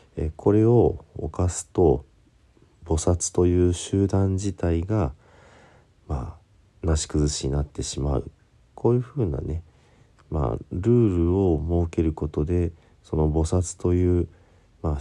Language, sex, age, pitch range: Japanese, male, 50-69, 75-95 Hz